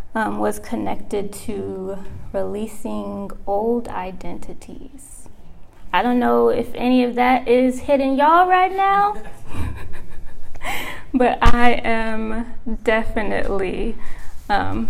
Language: English